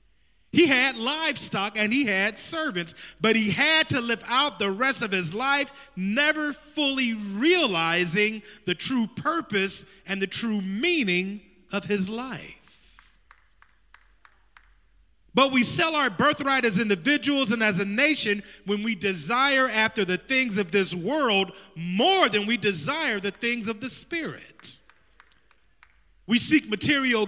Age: 30-49